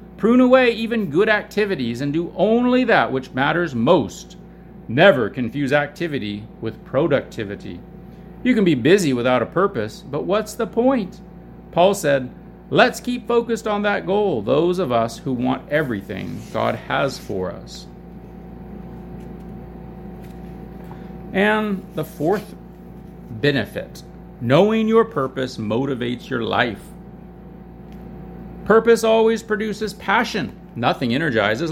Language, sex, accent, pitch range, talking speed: English, male, American, 135-200 Hz, 115 wpm